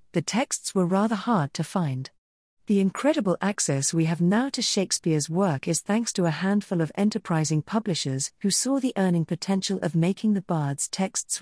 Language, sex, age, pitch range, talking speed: English, female, 40-59, 155-210 Hz, 180 wpm